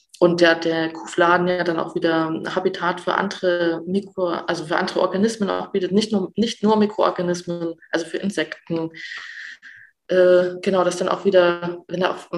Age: 20-39